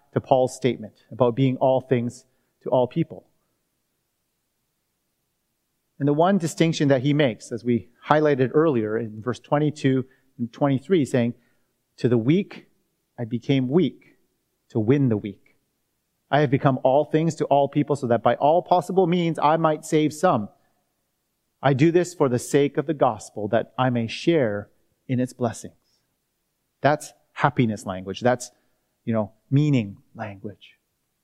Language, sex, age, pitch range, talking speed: English, male, 30-49, 125-160 Hz, 150 wpm